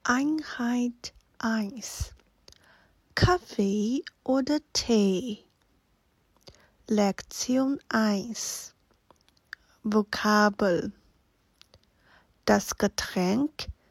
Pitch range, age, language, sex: 190-245 Hz, 30-49, Chinese, female